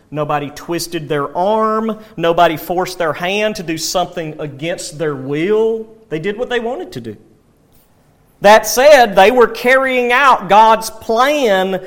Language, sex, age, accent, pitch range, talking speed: English, male, 40-59, American, 165-220 Hz, 145 wpm